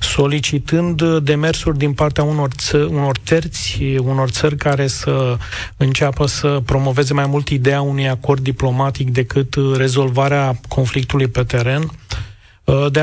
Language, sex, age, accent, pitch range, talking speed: Romanian, male, 30-49, native, 135-160 Hz, 120 wpm